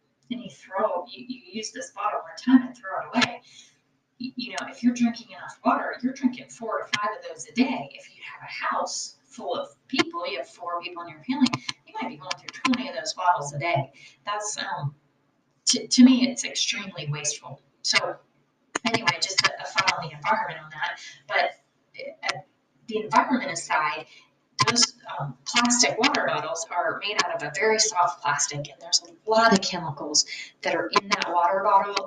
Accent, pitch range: American, 170-230 Hz